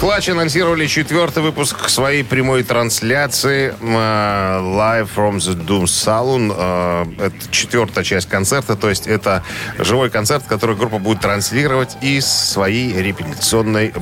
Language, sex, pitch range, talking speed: Russian, male, 100-125 Hz, 130 wpm